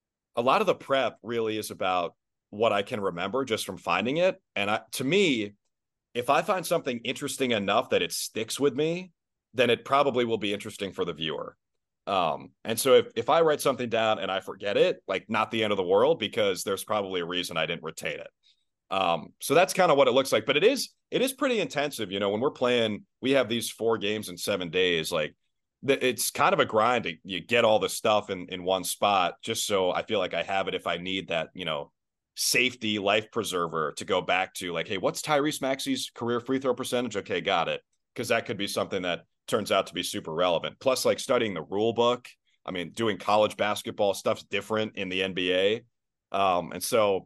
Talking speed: 225 wpm